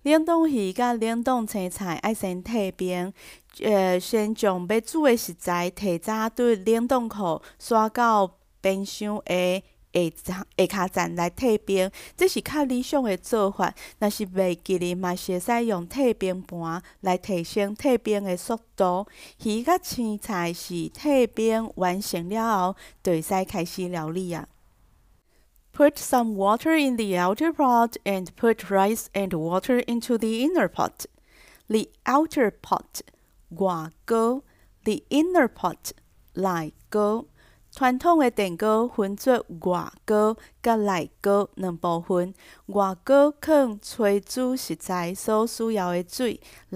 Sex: female